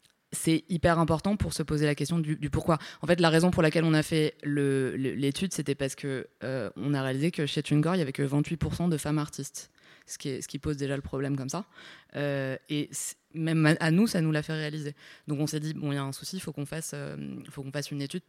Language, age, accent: French, 20-39, French